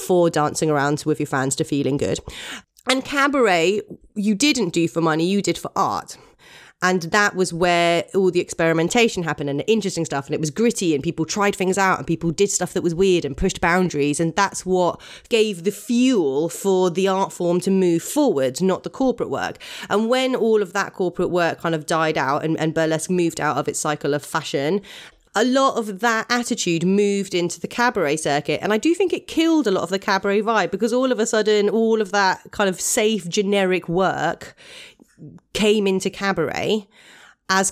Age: 30-49